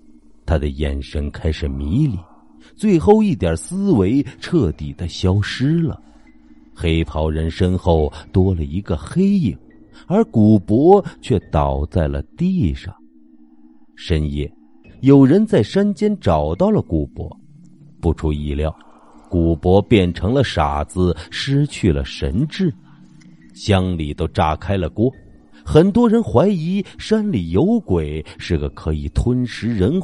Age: 50-69